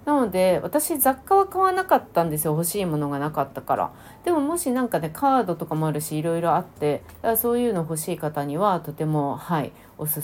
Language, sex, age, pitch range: Japanese, female, 30-49, 155-230 Hz